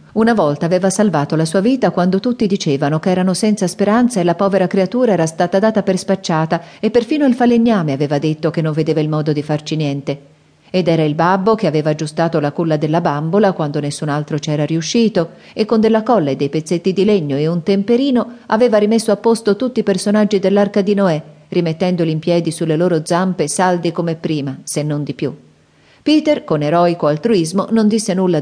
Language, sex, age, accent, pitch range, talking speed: Italian, female, 40-59, native, 150-195 Hz, 205 wpm